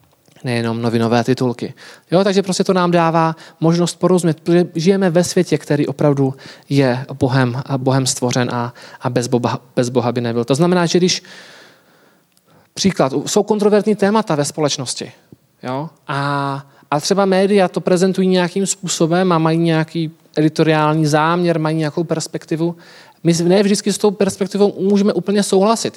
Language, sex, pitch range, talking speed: Czech, male, 140-180 Hz, 150 wpm